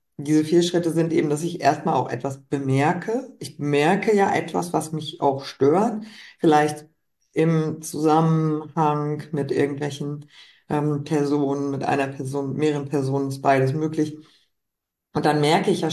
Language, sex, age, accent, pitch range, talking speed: German, female, 50-69, German, 140-170 Hz, 145 wpm